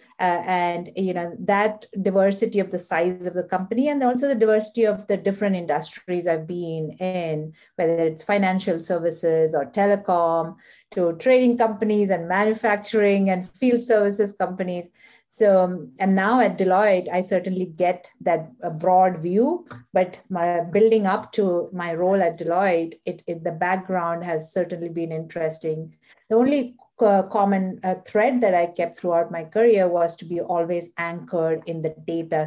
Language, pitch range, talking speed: English, 170-205 Hz, 155 wpm